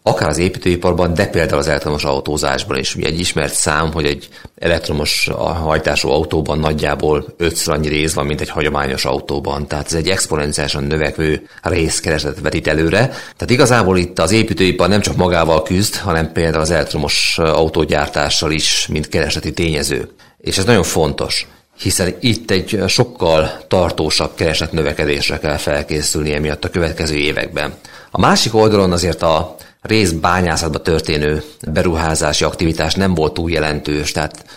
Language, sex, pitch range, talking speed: Hungarian, male, 75-95 Hz, 145 wpm